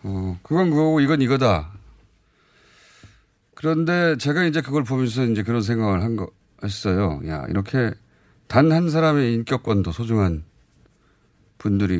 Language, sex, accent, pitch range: Korean, male, native, 100-140 Hz